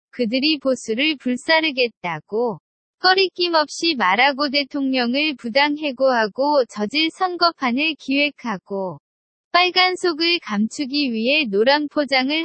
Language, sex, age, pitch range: Korean, female, 20-39, 230-315 Hz